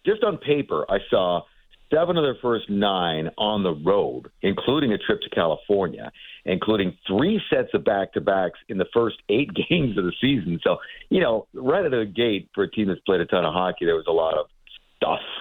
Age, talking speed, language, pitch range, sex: 50-69, 205 wpm, English, 90-155 Hz, male